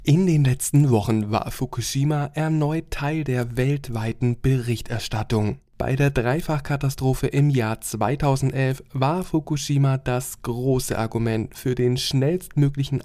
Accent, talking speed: German, 115 wpm